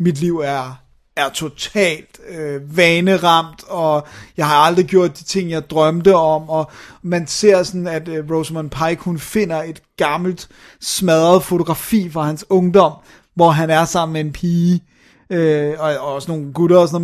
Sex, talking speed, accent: male, 165 wpm, native